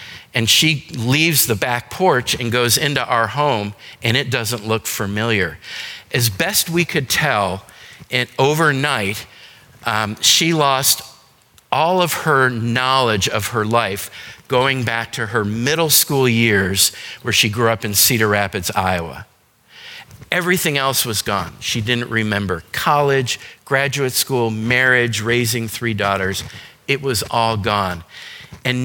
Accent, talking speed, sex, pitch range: American, 140 wpm, male, 105-135 Hz